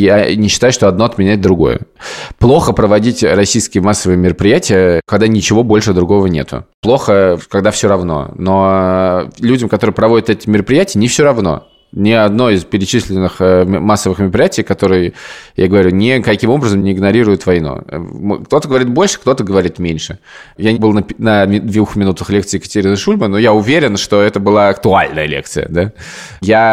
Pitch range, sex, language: 90-105 Hz, male, Russian